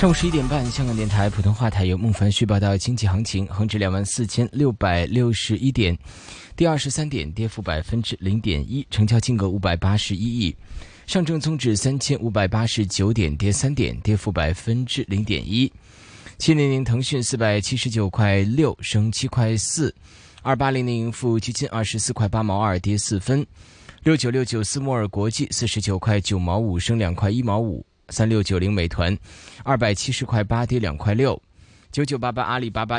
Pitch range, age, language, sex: 100-125 Hz, 20-39, Chinese, male